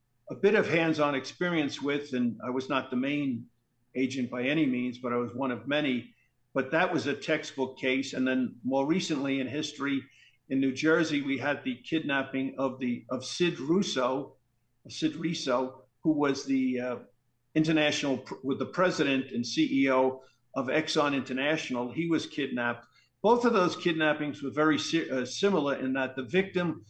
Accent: American